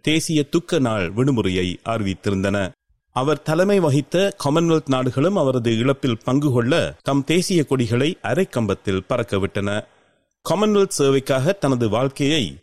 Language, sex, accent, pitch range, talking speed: Tamil, male, native, 130-215 Hz, 110 wpm